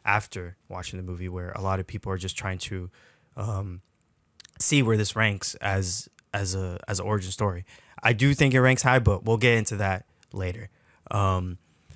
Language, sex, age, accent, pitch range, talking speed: English, male, 20-39, American, 95-115 Hz, 185 wpm